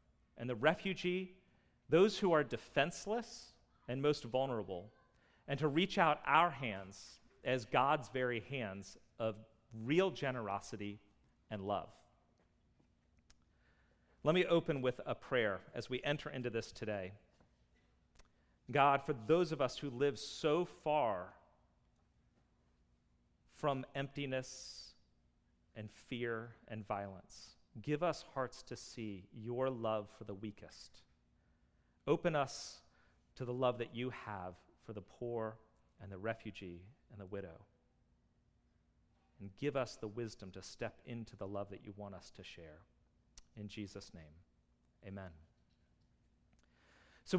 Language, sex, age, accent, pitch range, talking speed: English, male, 40-59, American, 100-150 Hz, 125 wpm